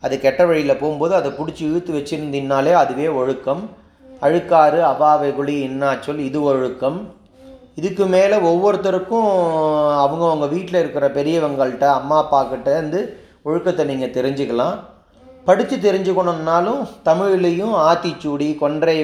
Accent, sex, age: native, male, 30-49